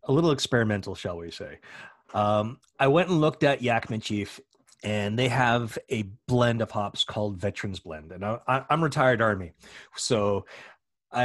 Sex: male